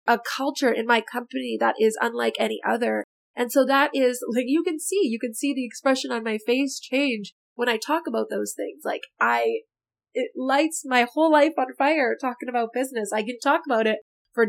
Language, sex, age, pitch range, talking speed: English, female, 20-39, 235-285 Hz, 210 wpm